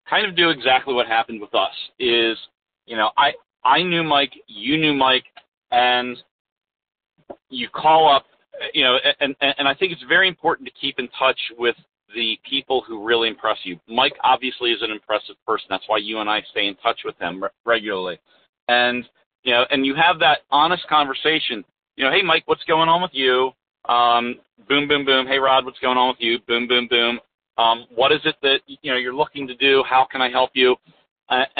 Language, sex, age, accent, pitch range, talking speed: English, male, 40-59, American, 120-145 Hz, 205 wpm